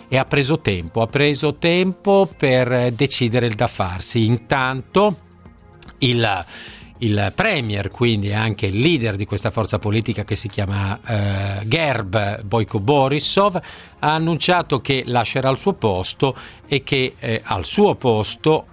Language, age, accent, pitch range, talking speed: Italian, 50-69, native, 105-150 Hz, 140 wpm